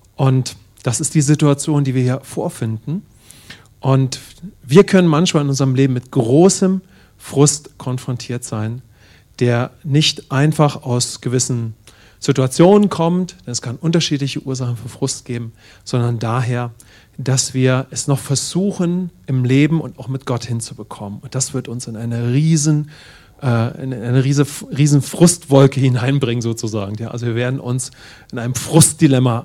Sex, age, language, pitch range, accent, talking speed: male, 40-59, English, 115-145 Hz, German, 145 wpm